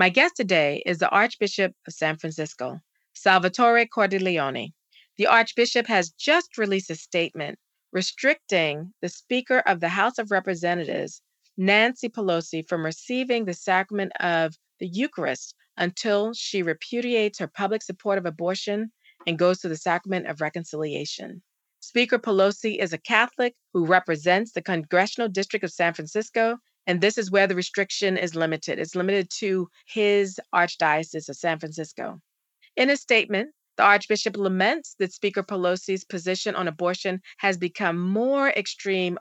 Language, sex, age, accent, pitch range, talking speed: English, female, 40-59, American, 170-215 Hz, 145 wpm